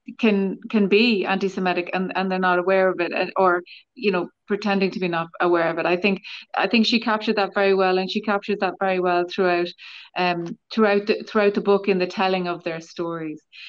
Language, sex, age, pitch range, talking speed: English, female, 30-49, 180-205 Hz, 215 wpm